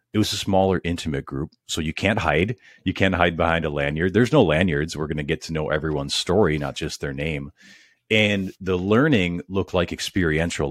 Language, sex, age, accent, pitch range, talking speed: English, male, 40-59, American, 75-95 Hz, 200 wpm